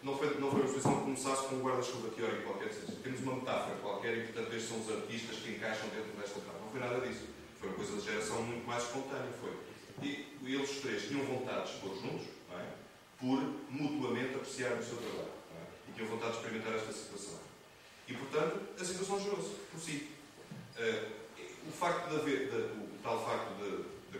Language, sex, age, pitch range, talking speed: Portuguese, male, 30-49, 95-130 Hz, 215 wpm